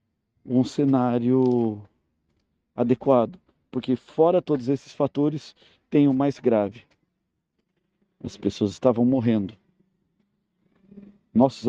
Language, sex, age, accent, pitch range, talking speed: Portuguese, male, 50-69, Brazilian, 115-140 Hz, 85 wpm